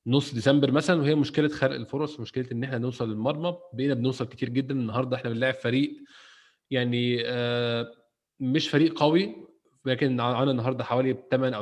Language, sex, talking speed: Arabic, male, 150 wpm